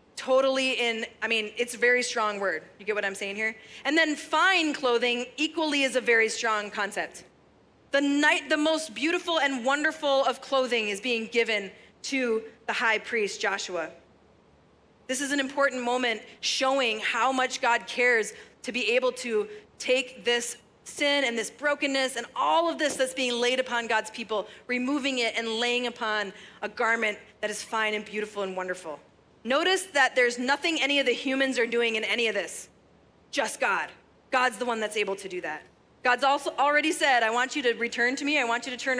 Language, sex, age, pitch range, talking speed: English, female, 30-49, 225-295 Hz, 190 wpm